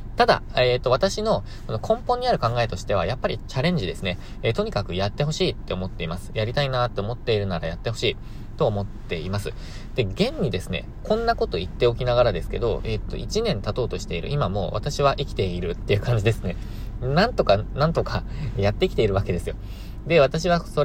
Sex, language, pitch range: male, Japanese, 95-120 Hz